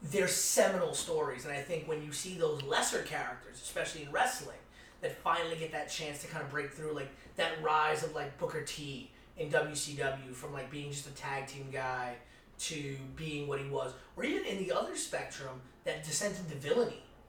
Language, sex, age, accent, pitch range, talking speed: English, male, 30-49, American, 145-200 Hz, 200 wpm